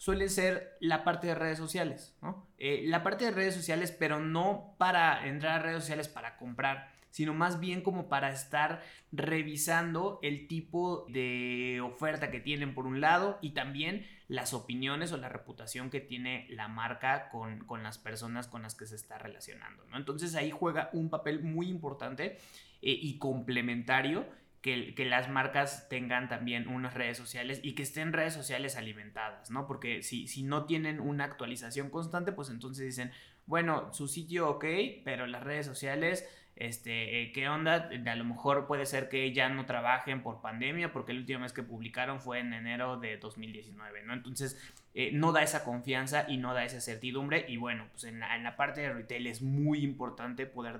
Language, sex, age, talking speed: Spanish, male, 20-39, 185 wpm